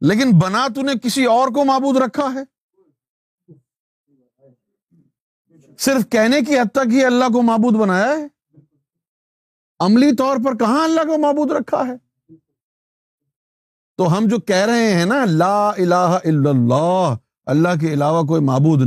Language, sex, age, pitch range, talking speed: Urdu, male, 50-69, 135-200 Hz, 145 wpm